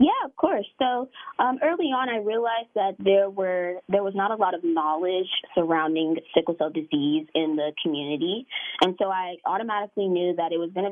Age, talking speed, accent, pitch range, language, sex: 20-39, 200 wpm, American, 170-225 Hz, English, female